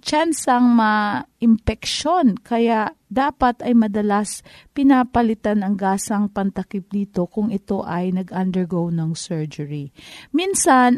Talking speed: 110 wpm